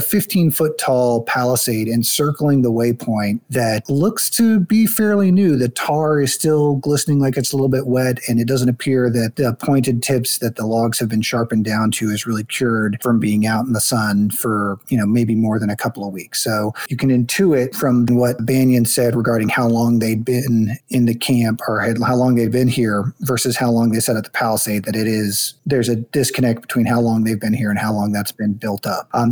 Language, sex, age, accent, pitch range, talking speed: English, male, 40-59, American, 115-135 Hz, 220 wpm